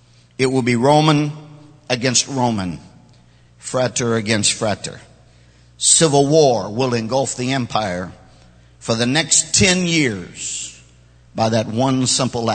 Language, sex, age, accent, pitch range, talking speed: English, male, 50-69, American, 100-145 Hz, 115 wpm